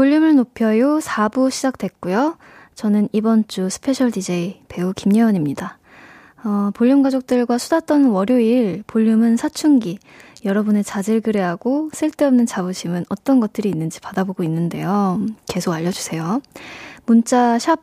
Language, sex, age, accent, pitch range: Korean, female, 20-39, native, 195-255 Hz